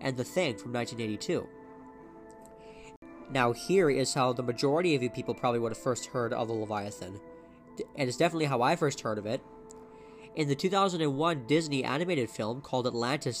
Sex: male